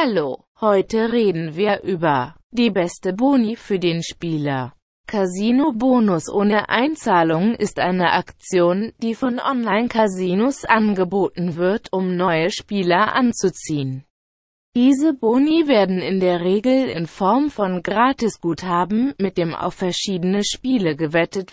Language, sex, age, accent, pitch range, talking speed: German, female, 20-39, German, 170-225 Hz, 125 wpm